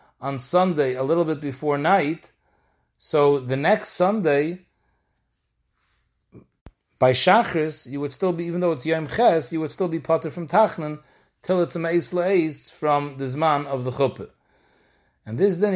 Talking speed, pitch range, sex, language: 160 wpm, 135-170 Hz, male, English